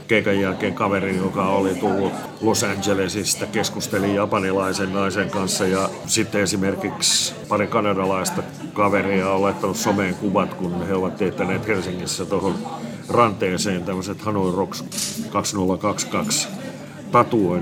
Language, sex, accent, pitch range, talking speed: Finnish, male, native, 95-110 Hz, 110 wpm